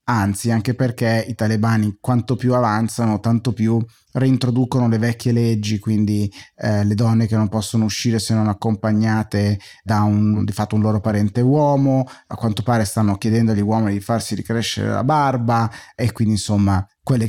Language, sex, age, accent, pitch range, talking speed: Italian, male, 30-49, native, 105-120 Hz, 170 wpm